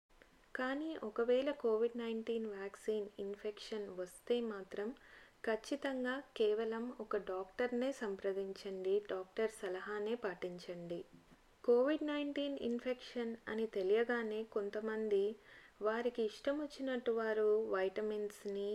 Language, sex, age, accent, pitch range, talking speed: Telugu, female, 20-39, native, 200-245 Hz, 85 wpm